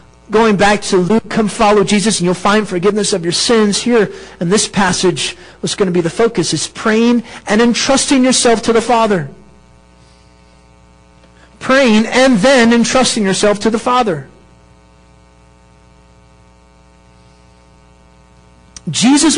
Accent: American